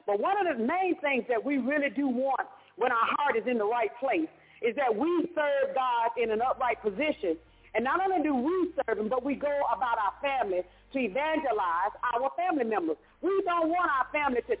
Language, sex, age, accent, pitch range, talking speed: English, female, 40-59, American, 260-330 Hz, 215 wpm